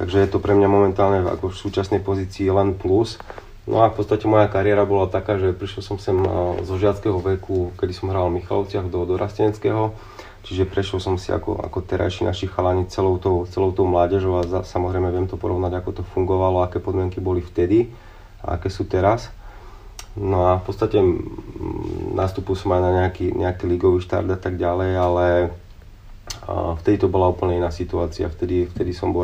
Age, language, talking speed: 30-49, Slovak, 195 wpm